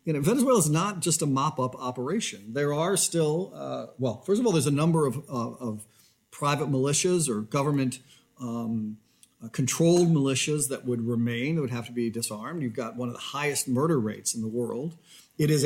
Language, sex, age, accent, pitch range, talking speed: English, male, 40-59, American, 125-160 Hz, 200 wpm